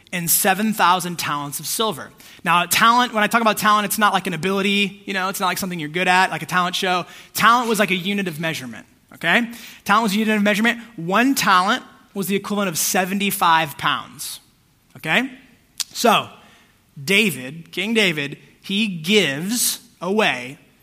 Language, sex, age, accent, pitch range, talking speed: English, male, 20-39, American, 175-215 Hz, 175 wpm